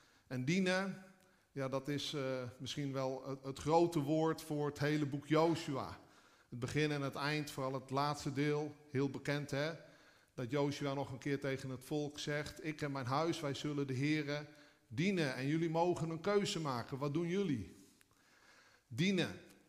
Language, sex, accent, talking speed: Dutch, male, Dutch, 175 wpm